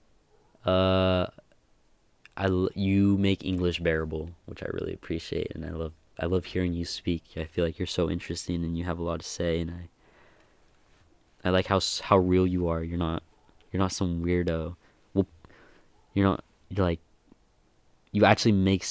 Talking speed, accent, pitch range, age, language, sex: 170 wpm, American, 85-95 Hz, 20-39, English, male